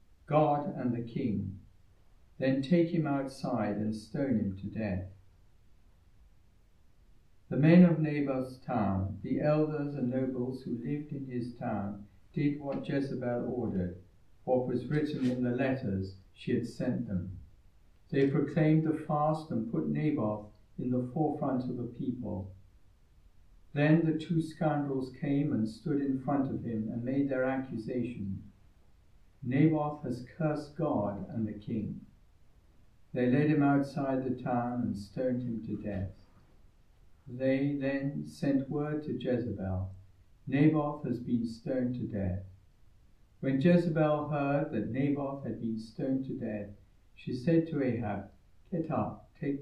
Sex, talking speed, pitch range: male, 140 wpm, 100-140 Hz